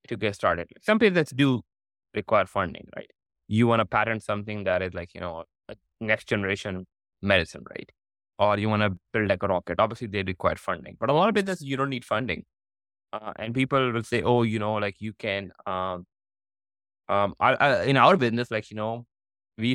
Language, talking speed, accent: English, 205 wpm, Indian